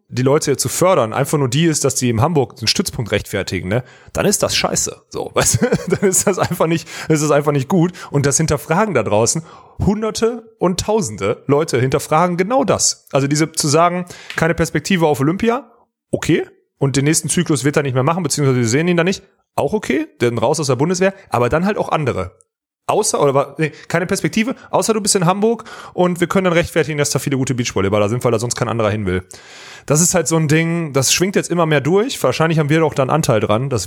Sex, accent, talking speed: male, German, 230 wpm